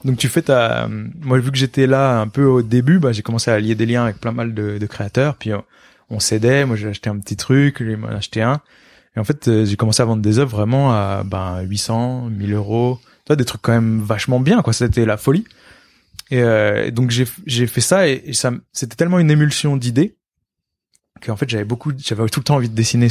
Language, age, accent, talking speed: French, 20-39, French, 235 wpm